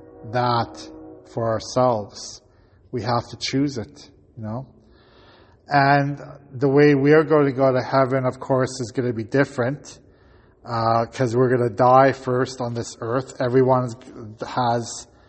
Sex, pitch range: male, 115-130 Hz